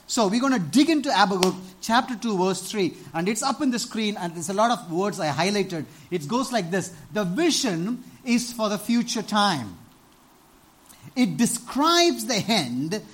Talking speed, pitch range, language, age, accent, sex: 185 wpm, 165-240 Hz, English, 50-69, Indian, male